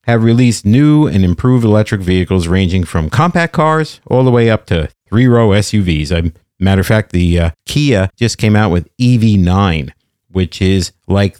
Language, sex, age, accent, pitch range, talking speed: English, male, 50-69, American, 90-125 Hz, 185 wpm